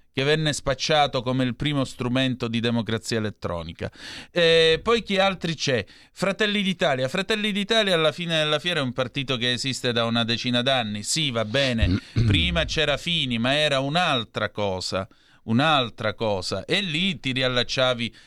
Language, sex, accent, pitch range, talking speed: Italian, male, native, 120-150 Hz, 155 wpm